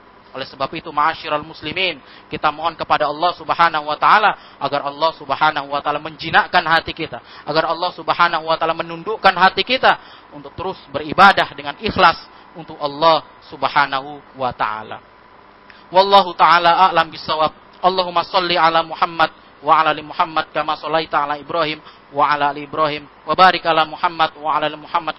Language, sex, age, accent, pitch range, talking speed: Indonesian, male, 30-49, native, 145-170 Hz, 155 wpm